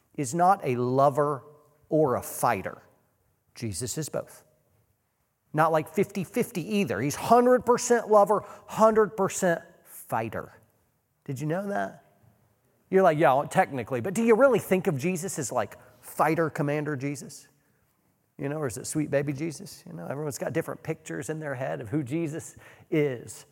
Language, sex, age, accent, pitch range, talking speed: English, male, 40-59, American, 135-185 Hz, 155 wpm